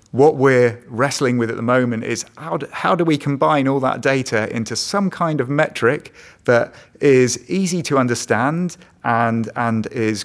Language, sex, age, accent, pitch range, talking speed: Danish, male, 30-49, British, 110-140 Hz, 175 wpm